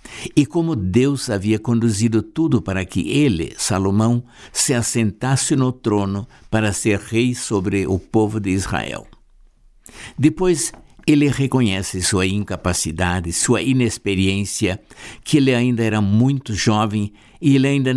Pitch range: 100-135 Hz